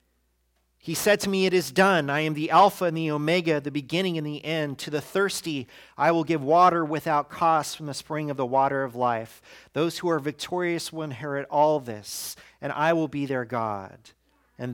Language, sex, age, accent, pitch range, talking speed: English, male, 40-59, American, 135-180 Hz, 210 wpm